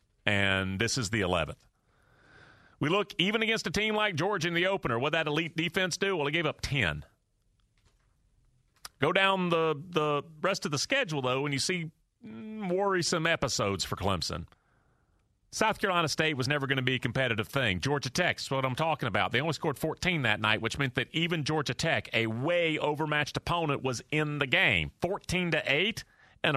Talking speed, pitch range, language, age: 185 wpm, 125-195 Hz, English, 40-59